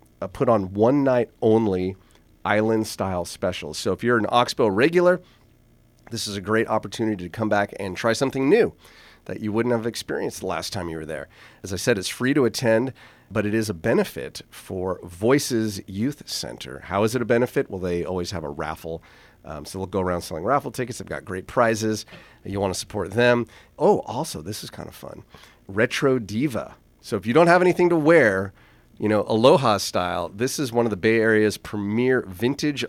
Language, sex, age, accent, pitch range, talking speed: English, male, 30-49, American, 90-115 Hz, 195 wpm